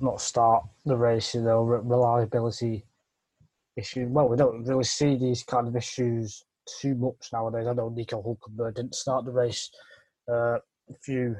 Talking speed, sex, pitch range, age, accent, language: 165 wpm, male, 120-135 Hz, 20-39, British, English